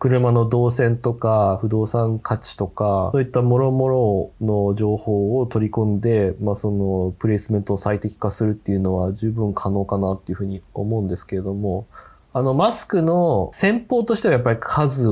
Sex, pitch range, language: male, 100-120 Hz, Japanese